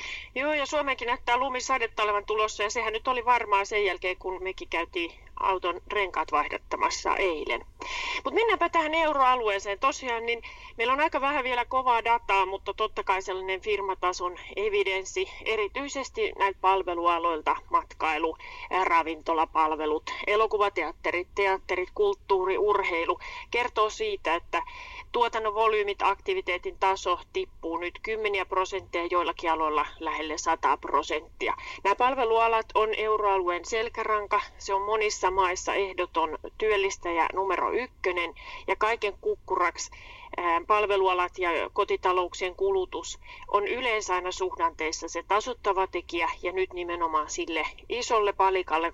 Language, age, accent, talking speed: Finnish, 30-49, native, 120 wpm